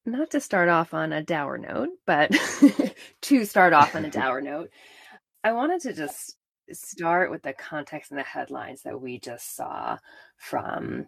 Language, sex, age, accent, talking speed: English, female, 20-39, American, 175 wpm